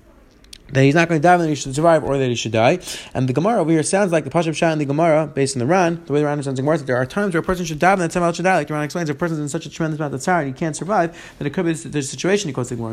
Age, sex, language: 30-49, male, English